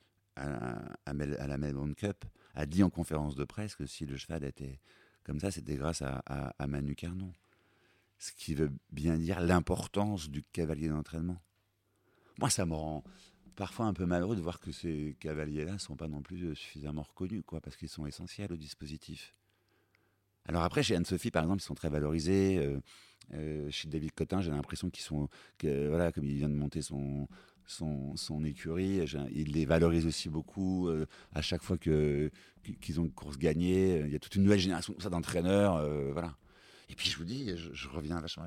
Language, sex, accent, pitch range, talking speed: French, male, French, 75-95 Hz, 195 wpm